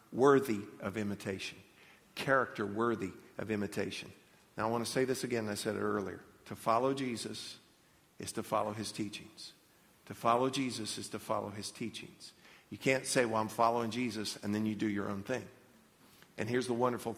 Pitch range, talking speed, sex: 110-135 Hz, 180 wpm, male